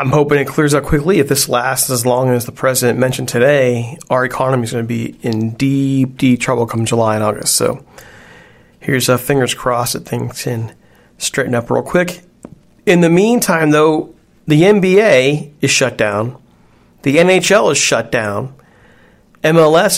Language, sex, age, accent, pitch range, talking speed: English, male, 40-59, American, 130-155 Hz, 170 wpm